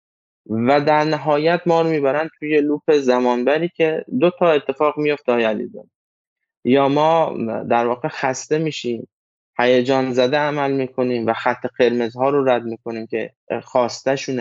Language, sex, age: Persian, male, 20-39